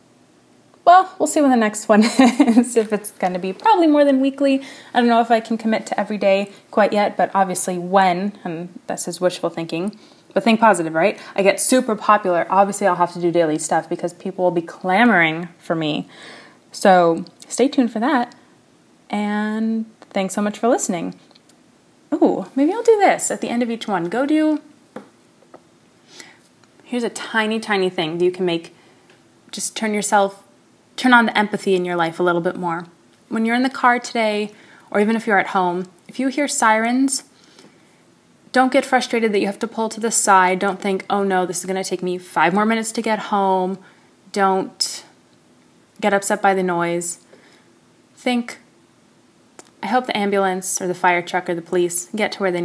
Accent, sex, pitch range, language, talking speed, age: American, female, 180-240 Hz, English, 195 wpm, 20-39